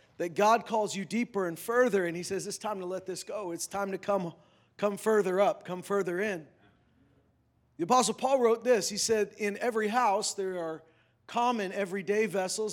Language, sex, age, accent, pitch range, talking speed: English, male, 40-59, American, 170-230 Hz, 195 wpm